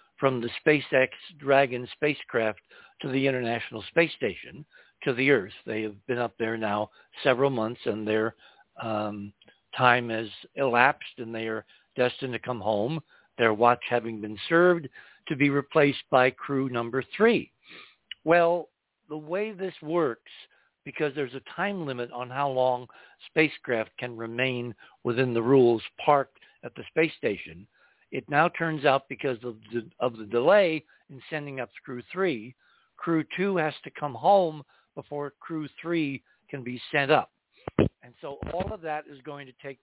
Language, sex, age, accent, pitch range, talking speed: English, male, 60-79, American, 120-160 Hz, 160 wpm